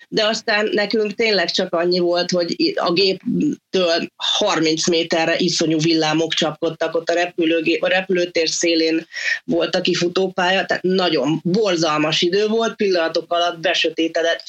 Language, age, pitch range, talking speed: Hungarian, 30-49, 165-205 Hz, 135 wpm